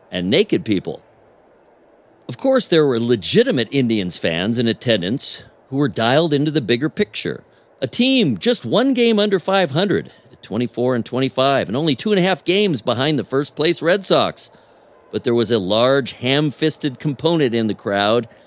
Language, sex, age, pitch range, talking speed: English, male, 50-69, 115-170 Hz, 170 wpm